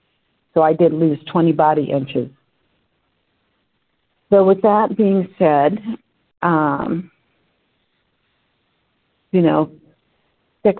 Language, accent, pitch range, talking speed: English, American, 155-180 Hz, 90 wpm